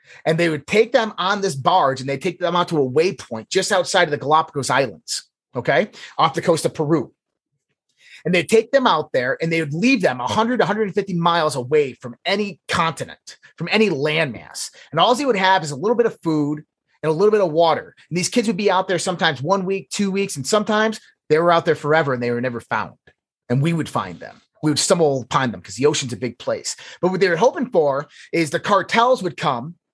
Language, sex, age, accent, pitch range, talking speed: English, male, 30-49, American, 145-190 Hz, 235 wpm